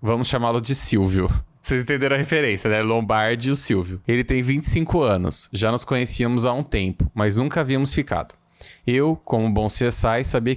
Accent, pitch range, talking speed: Brazilian, 110-130 Hz, 180 wpm